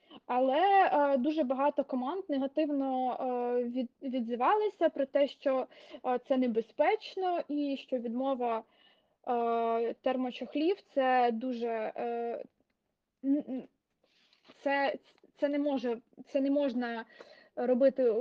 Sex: female